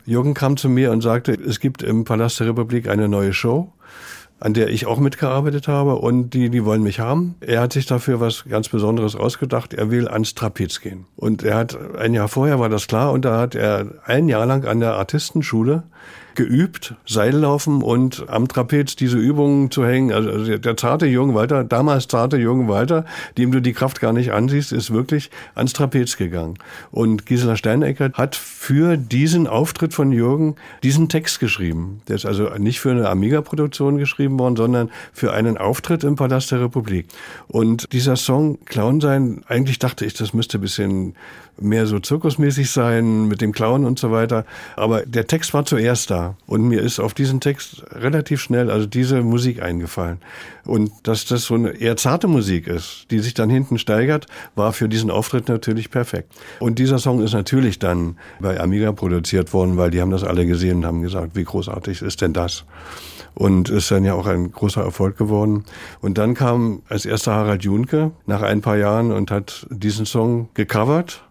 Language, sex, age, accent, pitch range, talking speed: German, male, 60-79, German, 105-135 Hz, 190 wpm